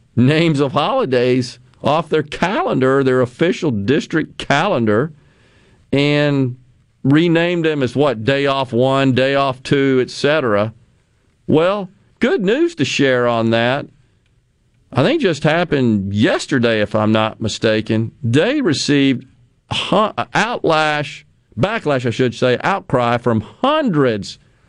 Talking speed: 120 wpm